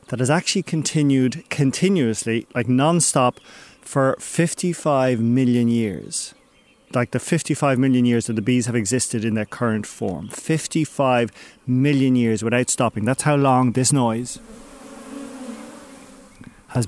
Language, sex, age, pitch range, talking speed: English, male, 30-49, 120-150 Hz, 130 wpm